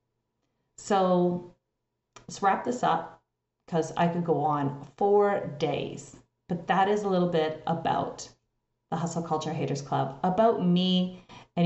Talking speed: 140 wpm